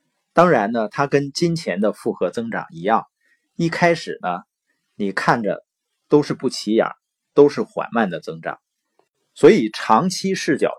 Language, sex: Chinese, male